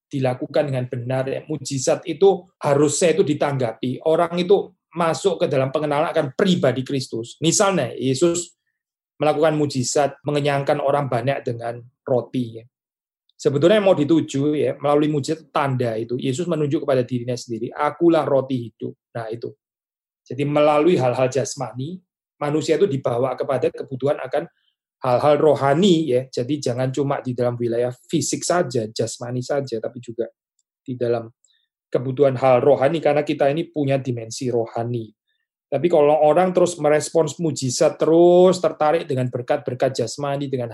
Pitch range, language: 125-155 Hz, Indonesian